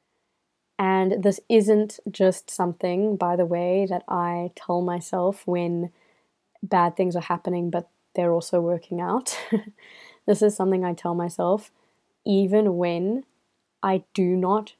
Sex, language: female, English